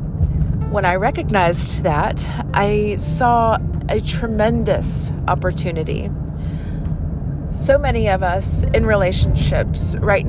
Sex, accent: female, American